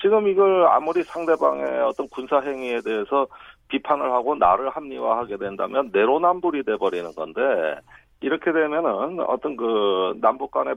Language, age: Korean, 40-59